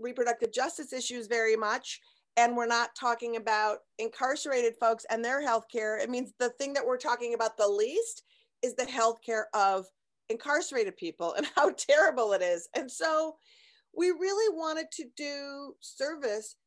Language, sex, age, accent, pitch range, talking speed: English, female, 40-59, American, 230-310 Hz, 165 wpm